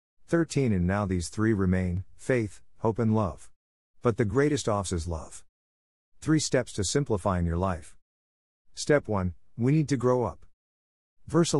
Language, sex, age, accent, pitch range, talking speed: English, male, 50-69, American, 85-115 Hz, 155 wpm